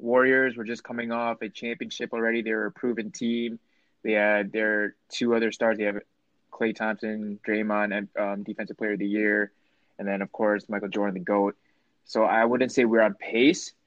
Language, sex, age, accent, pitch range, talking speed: English, male, 20-39, American, 100-115 Hz, 195 wpm